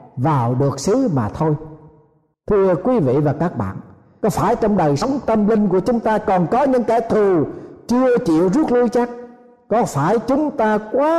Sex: male